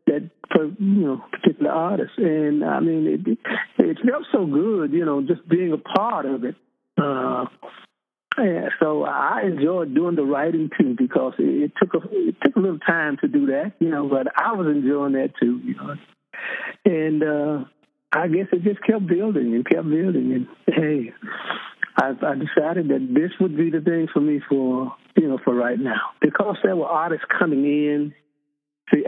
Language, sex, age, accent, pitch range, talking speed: English, male, 50-69, American, 145-185 Hz, 185 wpm